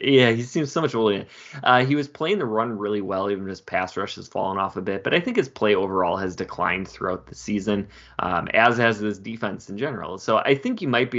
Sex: male